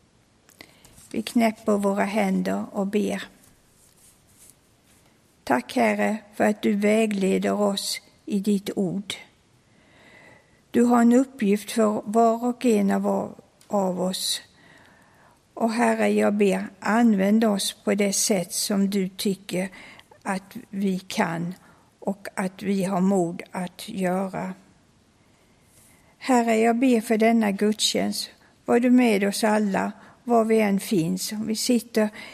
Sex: female